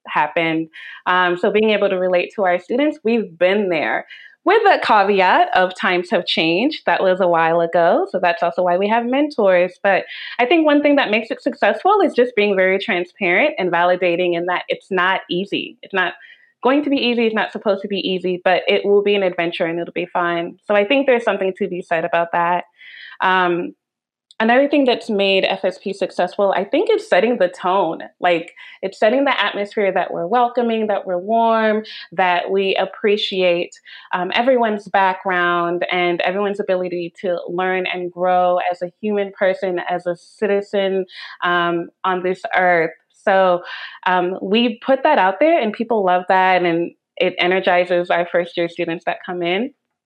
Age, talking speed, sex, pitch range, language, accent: 20-39, 185 wpm, female, 180-215 Hz, English, American